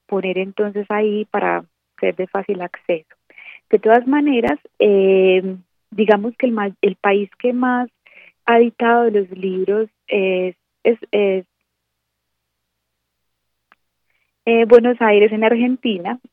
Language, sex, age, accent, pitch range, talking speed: Spanish, female, 30-49, Colombian, 185-225 Hz, 105 wpm